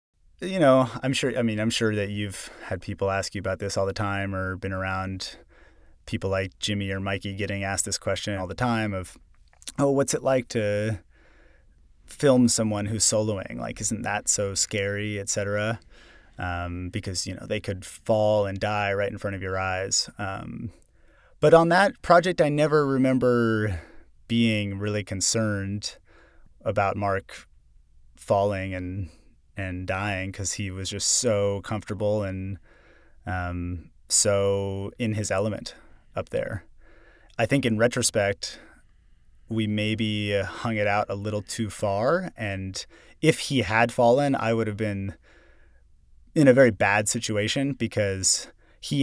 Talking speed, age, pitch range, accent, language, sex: 155 wpm, 30-49, 95-115 Hz, American, English, male